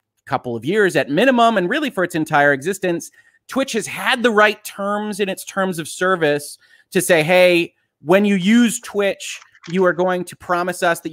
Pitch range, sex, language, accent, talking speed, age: 135-180 Hz, male, English, American, 195 wpm, 30-49